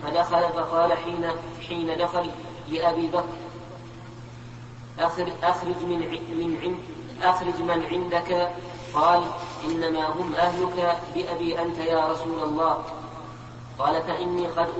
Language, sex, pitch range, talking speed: Arabic, female, 160-175 Hz, 95 wpm